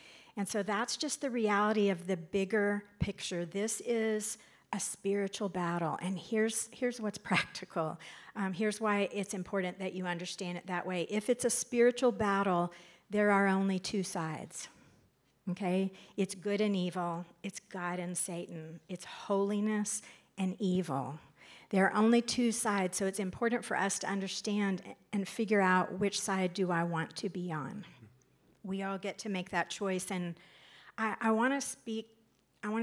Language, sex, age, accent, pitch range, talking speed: English, female, 50-69, American, 180-210 Hz, 170 wpm